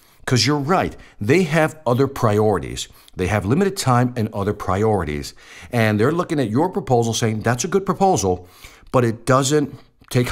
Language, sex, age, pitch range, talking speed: English, male, 50-69, 95-135 Hz, 170 wpm